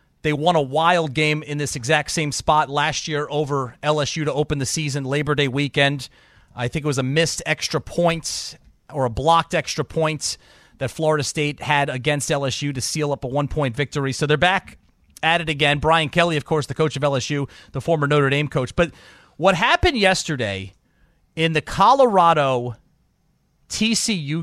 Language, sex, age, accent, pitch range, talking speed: English, male, 30-49, American, 145-205 Hz, 180 wpm